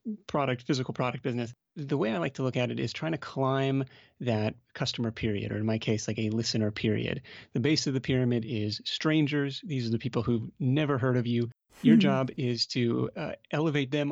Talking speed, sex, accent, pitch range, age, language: 210 wpm, male, American, 115-145 Hz, 30-49, English